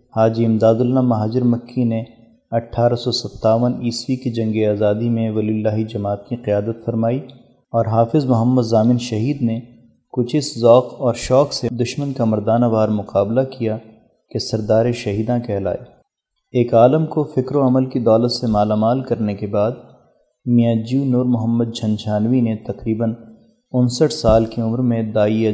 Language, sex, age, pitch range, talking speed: Urdu, male, 30-49, 110-125 Hz, 160 wpm